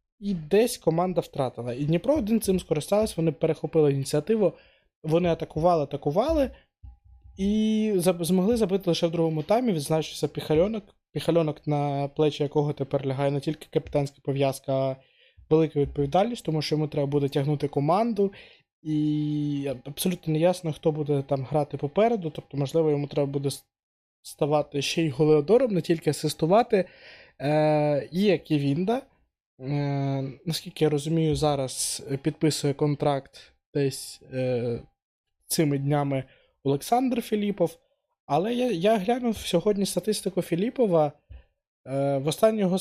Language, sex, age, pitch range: Ukrainian, male, 20-39, 145-185 Hz